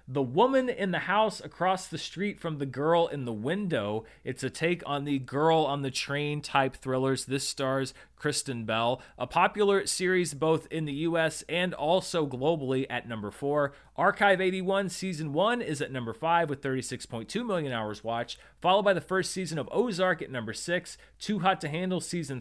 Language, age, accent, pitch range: English, 30-49, American, 130-170 Hz